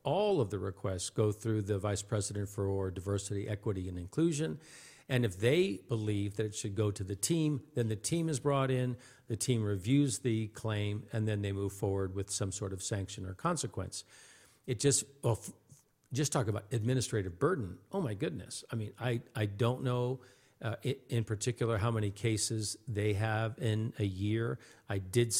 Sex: male